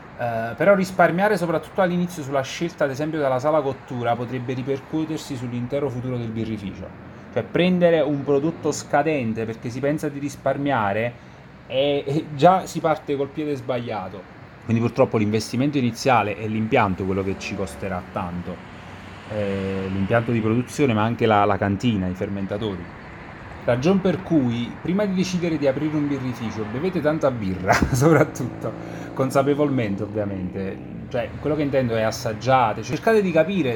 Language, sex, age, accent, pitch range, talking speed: Italian, male, 30-49, native, 110-150 Hz, 145 wpm